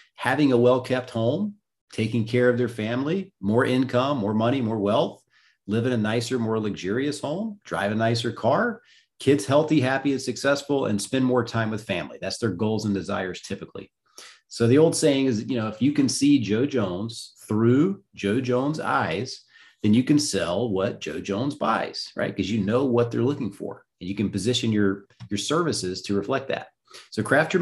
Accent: American